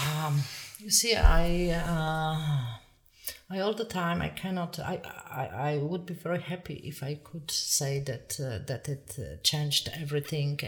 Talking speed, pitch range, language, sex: 155 wpm, 130-155 Hz, English, female